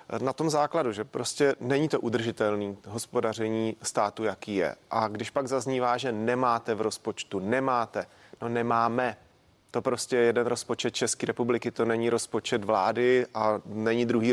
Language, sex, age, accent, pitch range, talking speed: Czech, male, 30-49, native, 120-140 Hz, 155 wpm